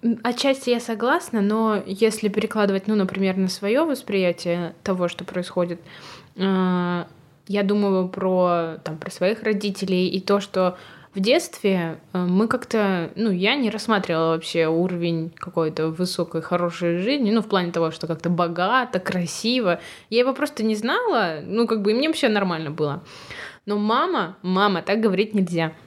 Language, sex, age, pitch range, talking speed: Russian, female, 20-39, 180-230 Hz, 155 wpm